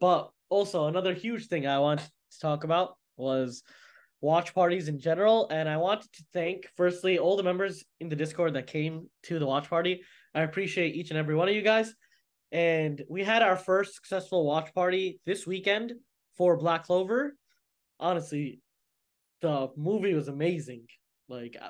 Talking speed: 170 wpm